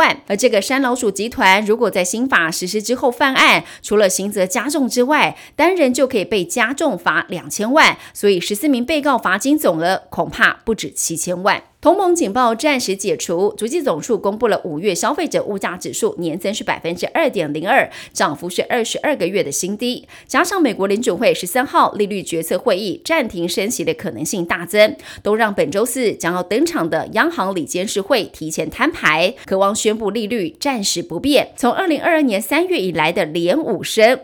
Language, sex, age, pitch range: Chinese, female, 30-49, 185-285 Hz